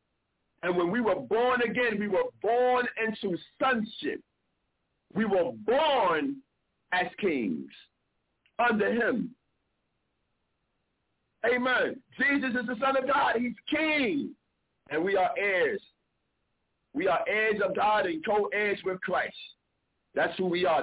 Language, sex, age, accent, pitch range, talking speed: English, male, 50-69, American, 180-245 Hz, 125 wpm